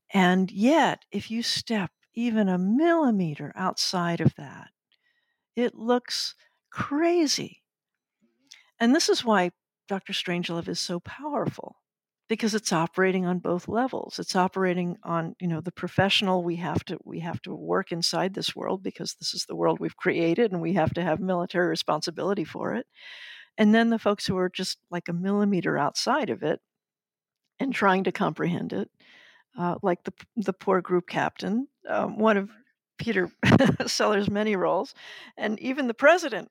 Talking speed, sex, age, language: 160 wpm, female, 50-69, English